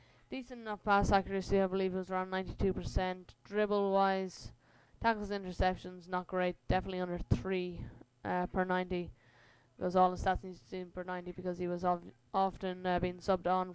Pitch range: 180-200 Hz